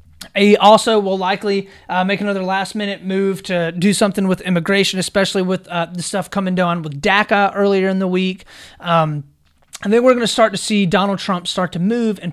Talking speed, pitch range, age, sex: 205 wpm, 165-205 Hz, 30-49, male